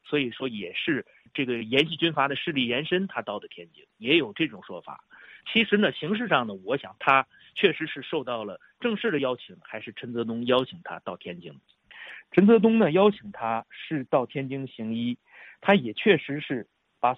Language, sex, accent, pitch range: Chinese, male, native, 125-205 Hz